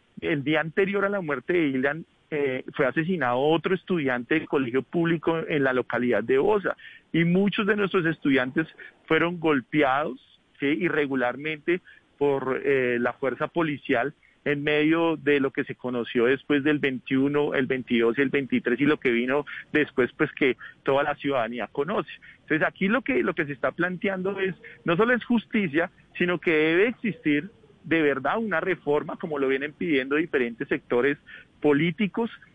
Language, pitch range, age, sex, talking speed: Spanish, 135-175 Hz, 40-59, male, 165 wpm